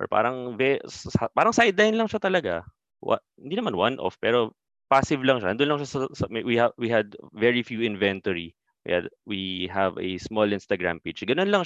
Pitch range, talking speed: 95-115 Hz, 185 wpm